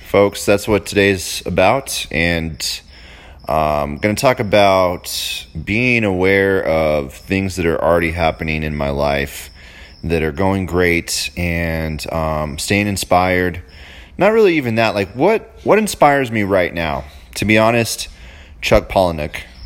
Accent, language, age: American, English, 30-49